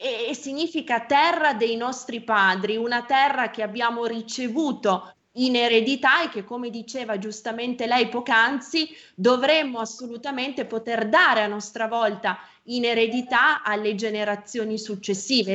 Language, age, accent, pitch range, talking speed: Italian, 20-39, native, 215-265 Hz, 125 wpm